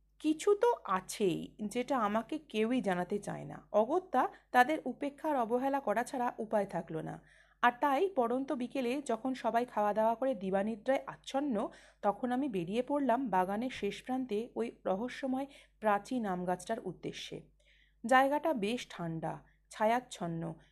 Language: Bengali